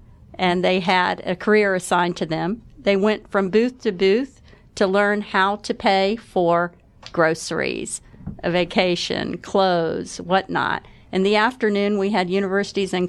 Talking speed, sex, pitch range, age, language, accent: 145 wpm, female, 185-230 Hz, 50-69, English, American